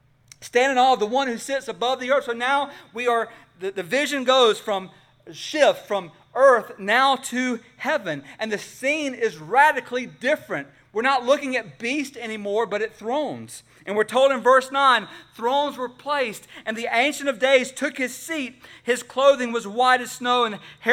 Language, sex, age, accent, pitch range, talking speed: English, male, 40-59, American, 175-260 Hz, 190 wpm